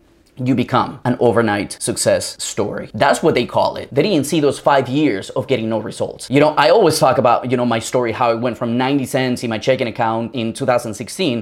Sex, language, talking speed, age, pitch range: male, English, 225 wpm, 20-39, 110-130 Hz